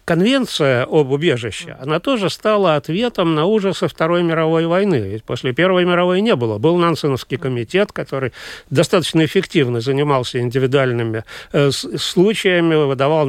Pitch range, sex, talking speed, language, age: 135-185 Hz, male, 130 wpm, Russian, 40-59